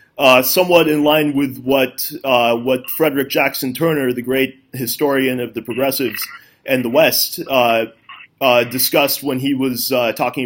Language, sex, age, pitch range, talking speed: English, male, 30-49, 125-145 Hz, 160 wpm